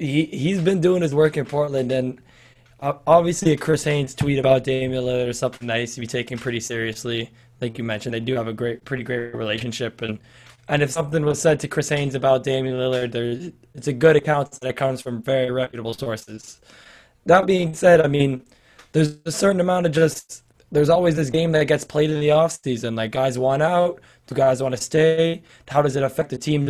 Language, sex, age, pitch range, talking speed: English, male, 20-39, 130-155 Hz, 215 wpm